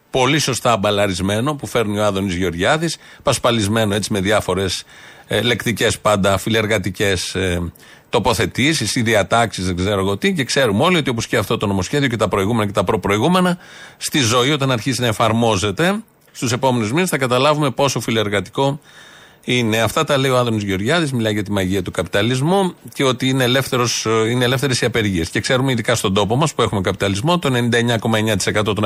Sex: male